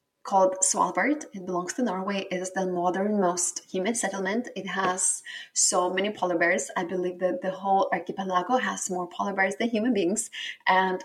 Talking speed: 175 wpm